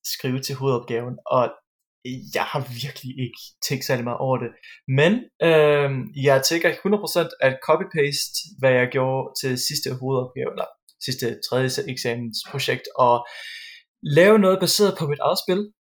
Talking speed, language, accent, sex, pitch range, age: 140 wpm, Danish, native, male, 125-150 Hz, 20-39